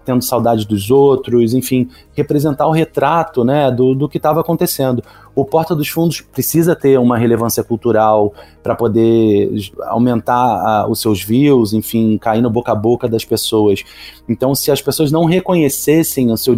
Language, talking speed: Portuguese, 165 wpm